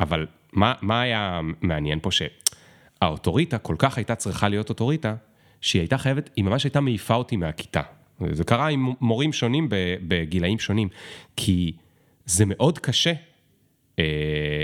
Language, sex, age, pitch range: Hebrew, male, 30-49, 100-145 Hz